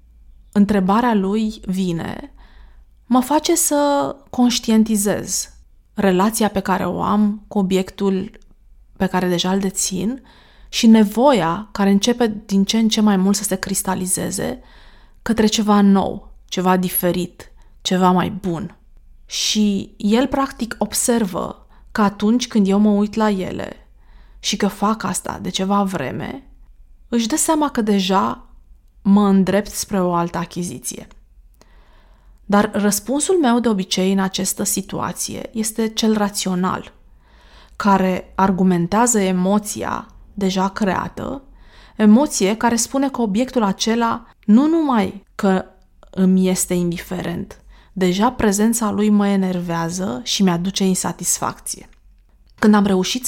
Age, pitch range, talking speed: 20-39, 185-225 Hz, 125 wpm